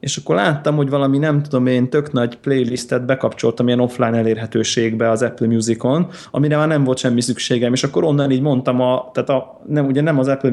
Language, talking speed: Hungarian, 210 wpm